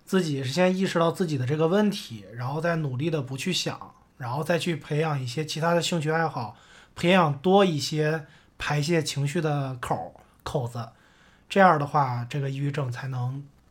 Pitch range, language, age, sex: 140-195 Hz, Chinese, 20-39, male